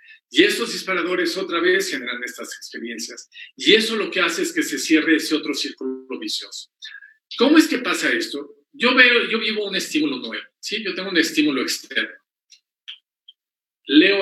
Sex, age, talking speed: male, 50-69, 170 wpm